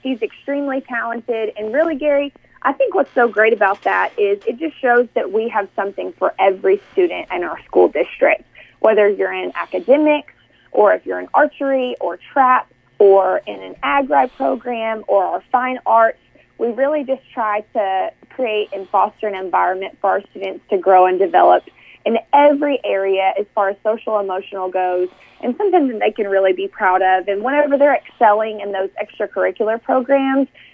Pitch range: 200-270 Hz